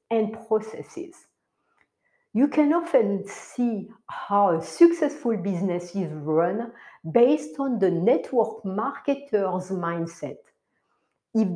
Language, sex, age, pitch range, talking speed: English, female, 60-79, 180-265 Hz, 100 wpm